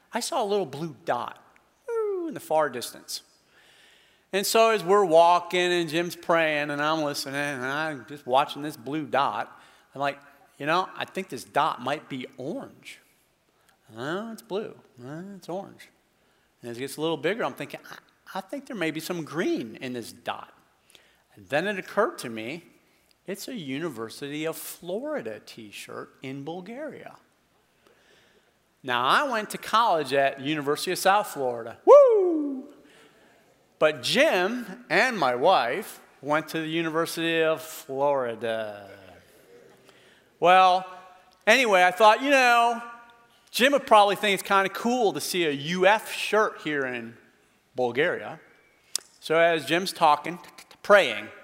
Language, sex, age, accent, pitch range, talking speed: English, male, 40-59, American, 145-205 Hz, 150 wpm